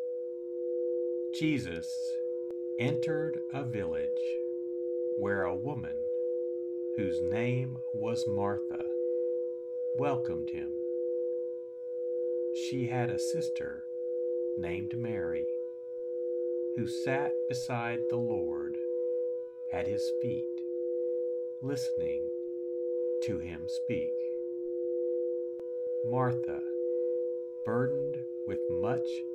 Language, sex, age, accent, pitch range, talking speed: English, male, 50-69, American, 125-165 Hz, 70 wpm